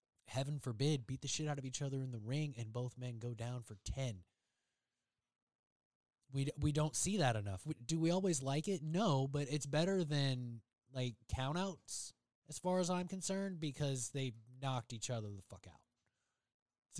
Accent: American